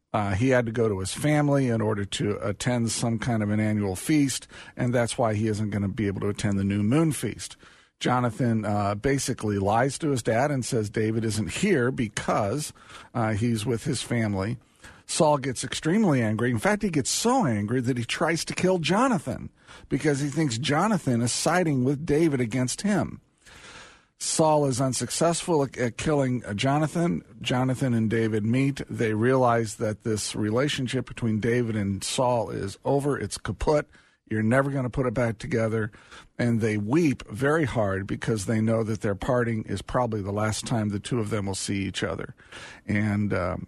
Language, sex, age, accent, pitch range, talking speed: English, male, 50-69, American, 105-135 Hz, 185 wpm